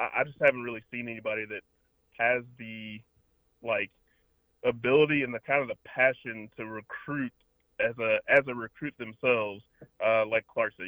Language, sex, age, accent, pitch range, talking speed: English, male, 20-39, American, 110-125 Hz, 155 wpm